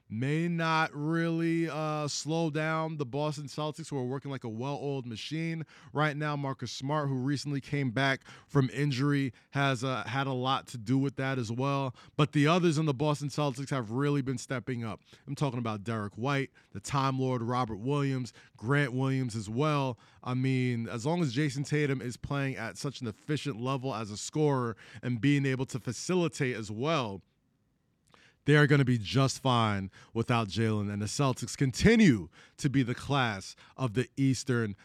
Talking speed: 185 wpm